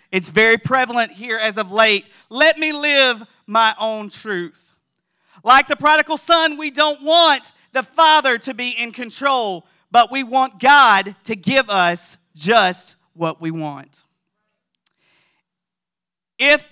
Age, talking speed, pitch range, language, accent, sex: 40-59, 135 wpm, 185-270 Hz, English, American, male